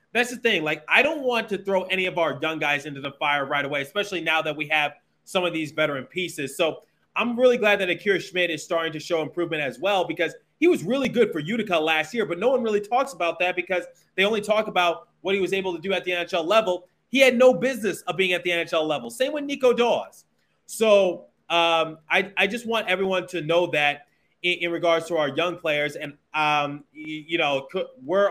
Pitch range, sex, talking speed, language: 140-195 Hz, male, 230 wpm, English